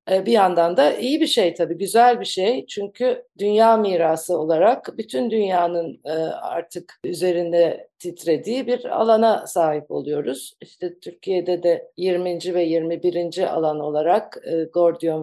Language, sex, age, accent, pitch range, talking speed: Turkish, female, 50-69, native, 170-210 Hz, 125 wpm